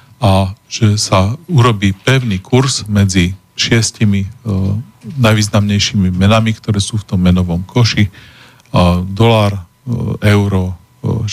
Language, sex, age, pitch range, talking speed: Slovak, male, 40-59, 100-120 Hz, 115 wpm